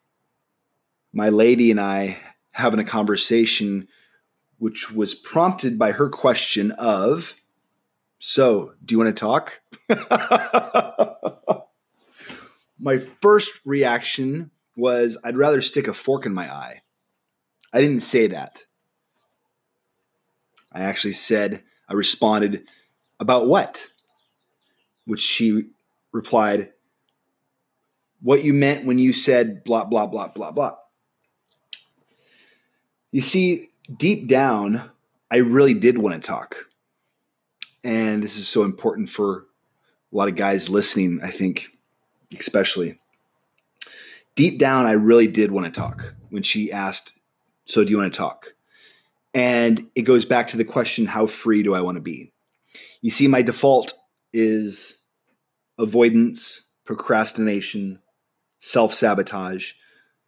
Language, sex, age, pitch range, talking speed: English, male, 20-39, 105-130 Hz, 120 wpm